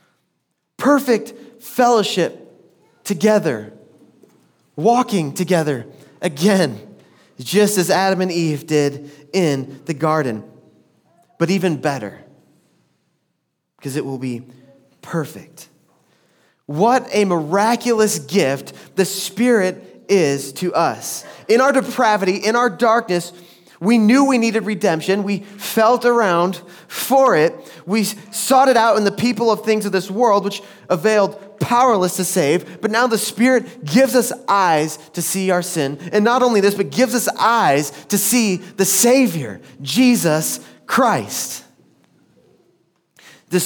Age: 30-49